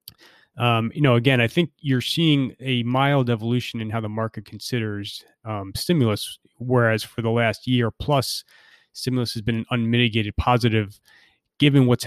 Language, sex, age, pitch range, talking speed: English, male, 20-39, 105-120 Hz, 160 wpm